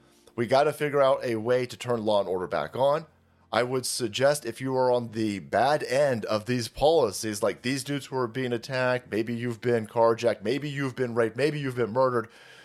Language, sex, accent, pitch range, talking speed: English, male, American, 115-155 Hz, 220 wpm